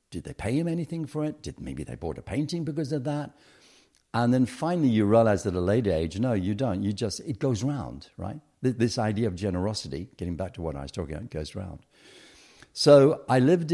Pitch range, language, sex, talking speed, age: 85-120 Hz, English, male, 230 wpm, 60-79